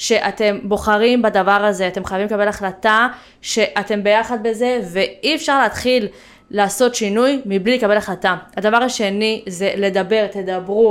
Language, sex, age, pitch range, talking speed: Hebrew, female, 20-39, 195-235 Hz, 130 wpm